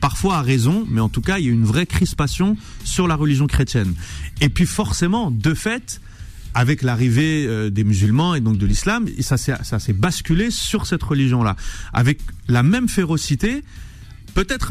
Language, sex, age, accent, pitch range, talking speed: French, male, 30-49, French, 120-175 Hz, 175 wpm